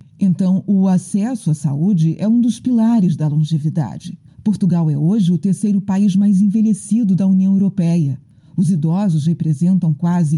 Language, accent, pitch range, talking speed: Portuguese, Brazilian, 160-205 Hz, 150 wpm